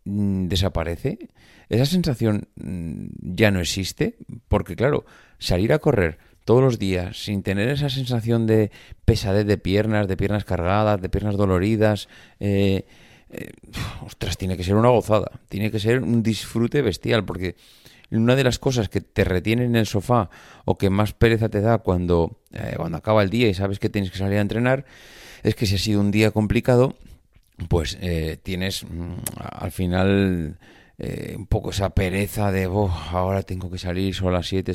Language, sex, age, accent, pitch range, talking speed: Spanish, male, 30-49, Spanish, 95-115 Hz, 175 wpm